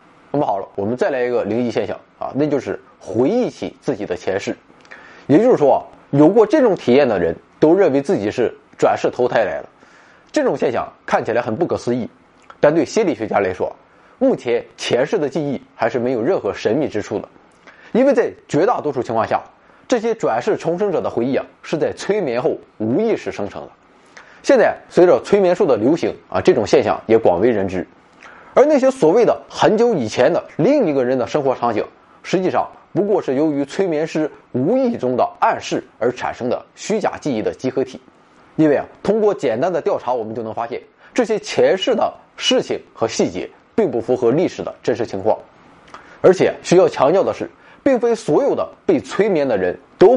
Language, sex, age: Chinese, male, 20-39